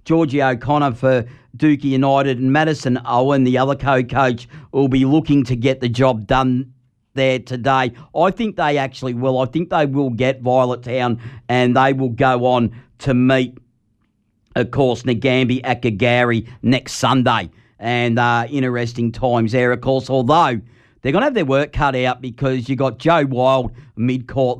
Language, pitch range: English, 120-135 Hz